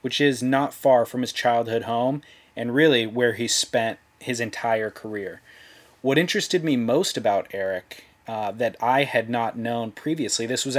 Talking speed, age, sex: 170 wpm, 30-49, male